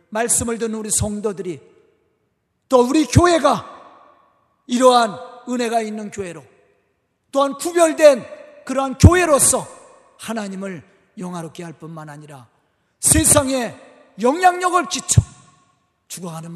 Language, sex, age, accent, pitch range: Korean, male, 40-59, native, 170-255 Hz